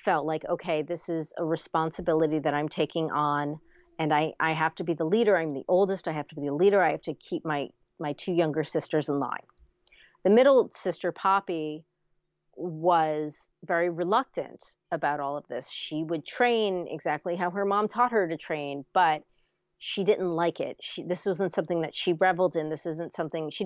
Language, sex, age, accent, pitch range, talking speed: English, female, 30-49, American, 155-190 Hz, 200 wpm